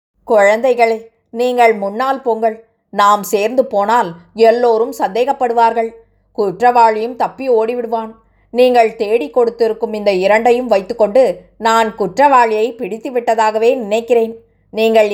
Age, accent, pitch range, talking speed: 20-39, native, 210-240 Hz, 95 wpm